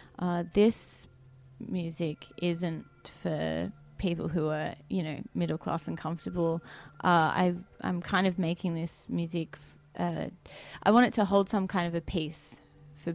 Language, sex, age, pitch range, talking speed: English, female, 20-39, 160-180 Hz, 160 wpm